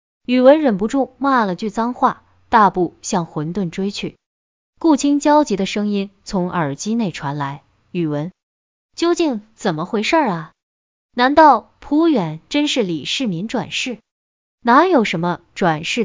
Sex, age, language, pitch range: female, 20-39, Chinese, 175-255 Hz